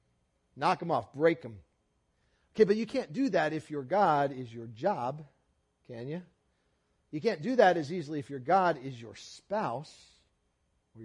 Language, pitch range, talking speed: English, 120-180 Hz, 175 wpm